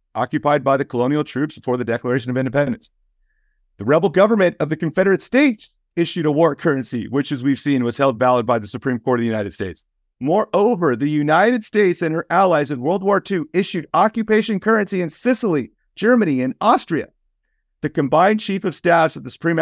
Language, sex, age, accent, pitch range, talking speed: English, male, 40-59, American, 115-170 Hz, 195 wpm